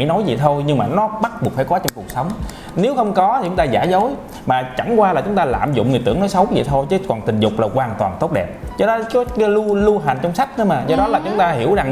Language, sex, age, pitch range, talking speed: Vietnamese, male, 20-39, 145-225 Hz, 305 wpm